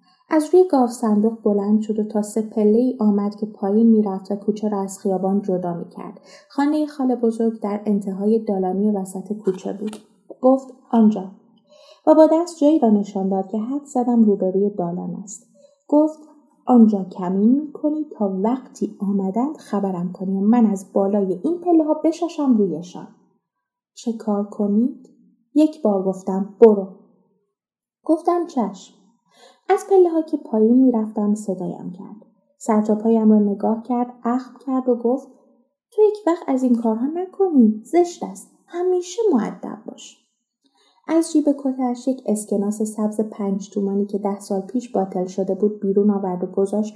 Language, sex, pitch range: Persian, female, 200-260 Hz